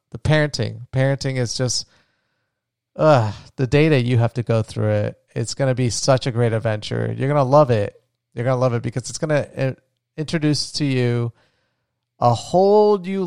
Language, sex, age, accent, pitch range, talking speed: English, male, 30-49, American, 120-140 Hz, 200 wpm